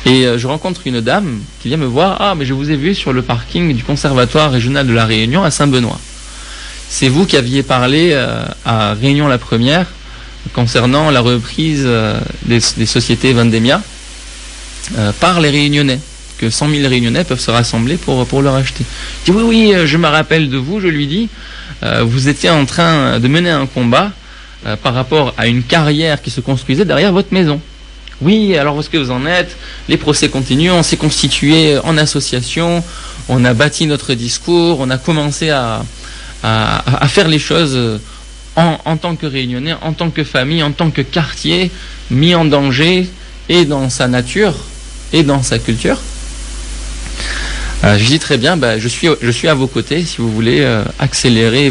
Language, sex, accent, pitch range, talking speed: French, male, French, 125-160 Hz, 180 wpm